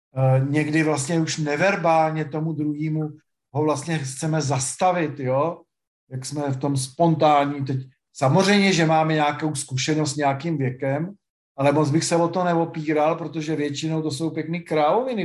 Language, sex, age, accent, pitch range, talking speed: Czech, male, 50-69, native, 140-180 Hz, 150 wpm